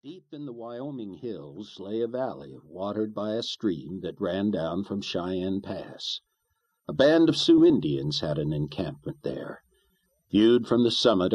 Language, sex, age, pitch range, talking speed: English, male, 60-79, 90-125 Hz, 165 wpm